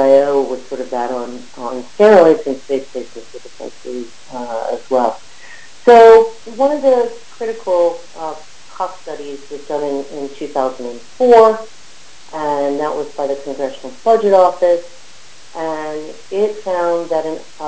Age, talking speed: 50-69, 130 wpm